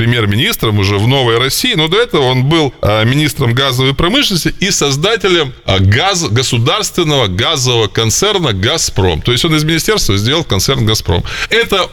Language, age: Russian, 20-39